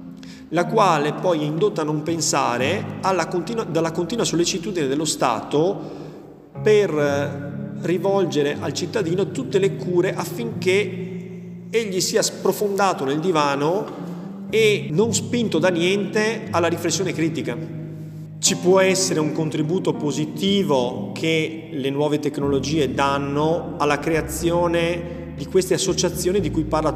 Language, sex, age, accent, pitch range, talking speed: Italian, male, 30-49, native, 145-185 Hz, 120 wpm